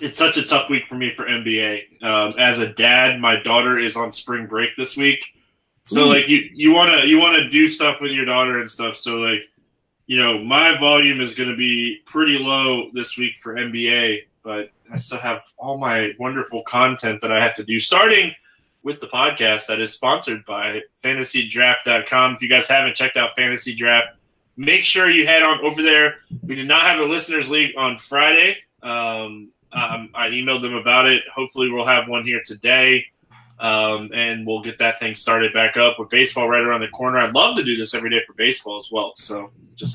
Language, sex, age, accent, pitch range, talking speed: English, male, 20-39, American, 115-140 Hz, 210 wpm